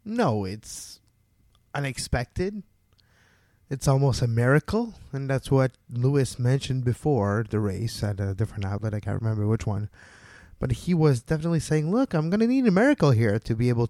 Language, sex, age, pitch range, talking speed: English, male, 20-39, 105-135 Hz, 175 wpm